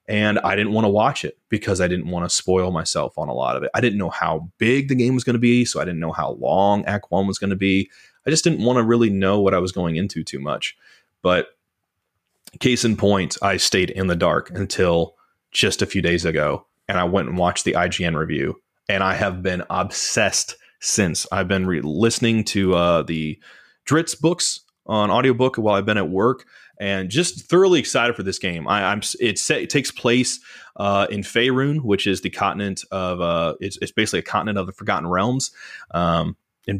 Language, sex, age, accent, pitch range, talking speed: English, male, 30-49, American, 95-120 Hz, 215 wpm